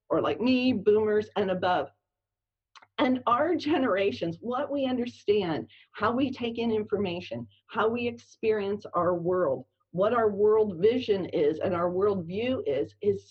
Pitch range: 175-240 Hz